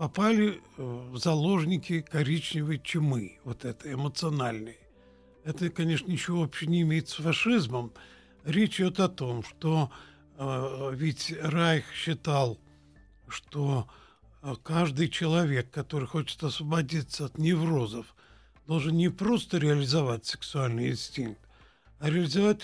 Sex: male